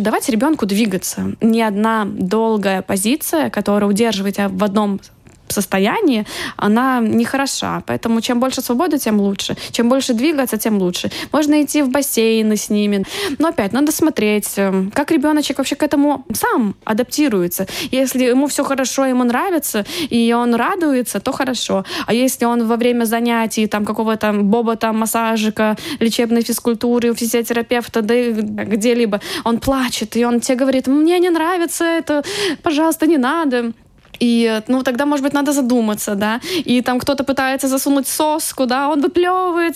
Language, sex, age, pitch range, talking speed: Russian, female, 20-39, 220-280 Hz, 150 wpm